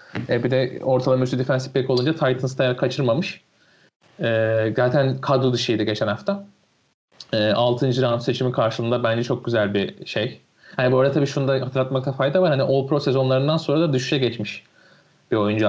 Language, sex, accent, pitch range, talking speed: Turkish, male, native, 115-130 Hz, 170 wpm